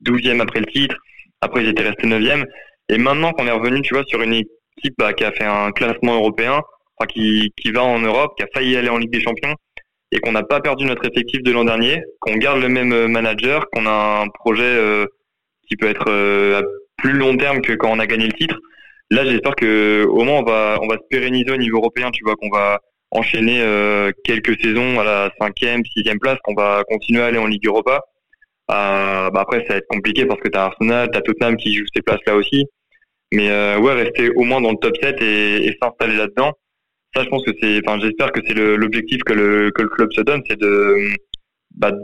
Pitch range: 105-125 Hz